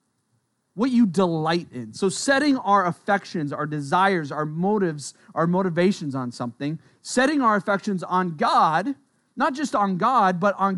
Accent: American